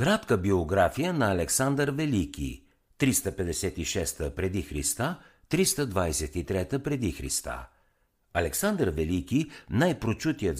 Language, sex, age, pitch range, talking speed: Bulgarian, male, 60-79, 80-120 Hz, 80 wpm